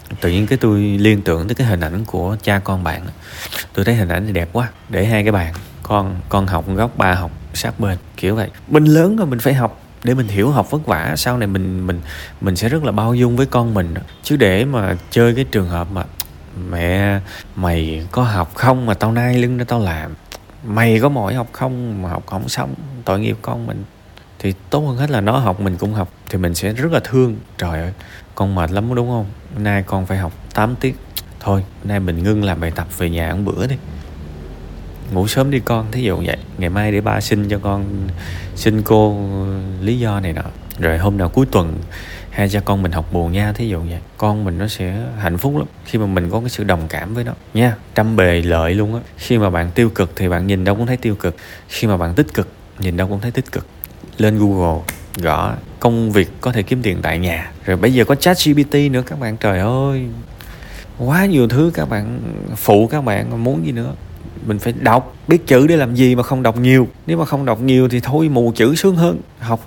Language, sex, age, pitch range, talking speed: Vietnamese, male, 20-39, 90-120 Hz, 235 wpm